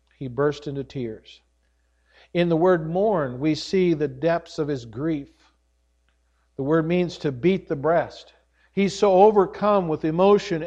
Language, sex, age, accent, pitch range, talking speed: English, male, 50-69, American, 130-175 Hz, 150 wpm